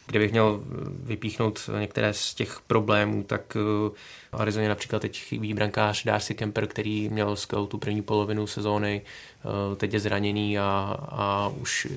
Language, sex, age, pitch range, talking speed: Czech, male, 20-39, 105-110 Hz, 140 wpm